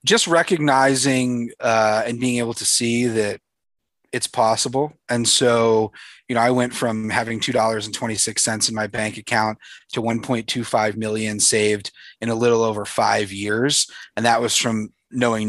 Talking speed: 150 wpm